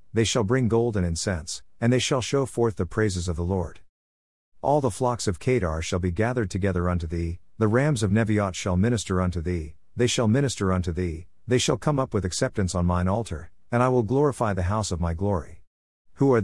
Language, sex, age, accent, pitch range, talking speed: English, male, 50-69, American, 90-120 Hz, 220 wpm